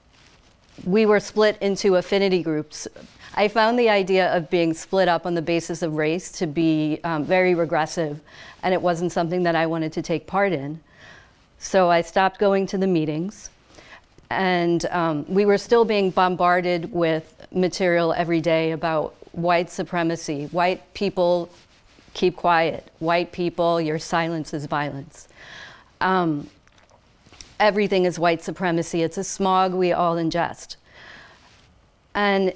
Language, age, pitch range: English, 40-59, 165-185 Hz